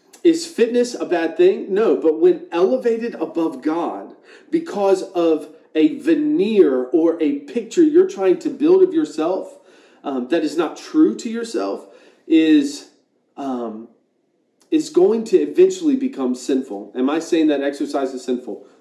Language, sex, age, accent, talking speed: English, male, 30-49, American, 145 wpm